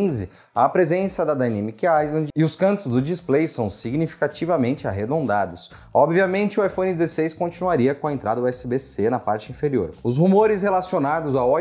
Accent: Brazilian